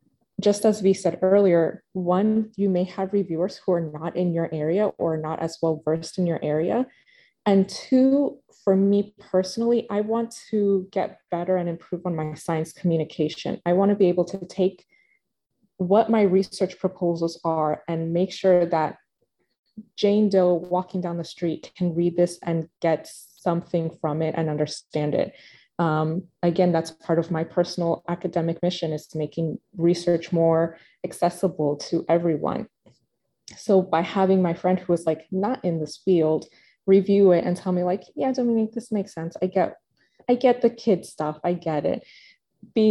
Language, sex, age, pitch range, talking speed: English, female, 20-39, 165-200 Hz, 170 wpm